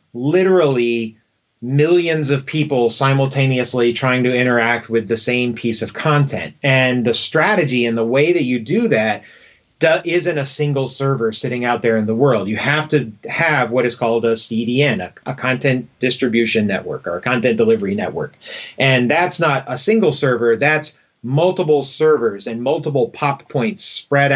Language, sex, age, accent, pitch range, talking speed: English, male, 30-49, American, 120-150 Hz, 165 wpm